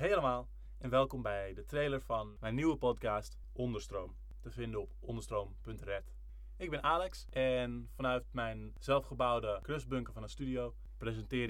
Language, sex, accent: Dutch, male, Dutch